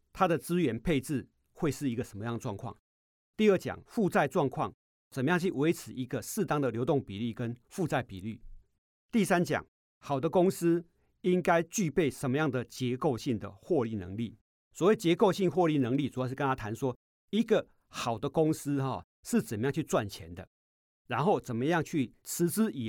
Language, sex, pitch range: Chinese, male, 110-165 Hz